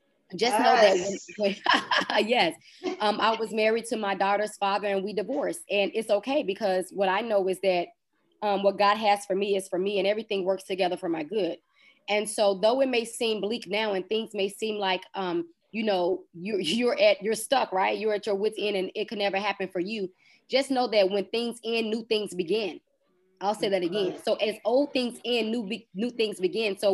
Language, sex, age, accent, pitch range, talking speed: English, female, 20-39, American, 190-220 Hz, 220 wpm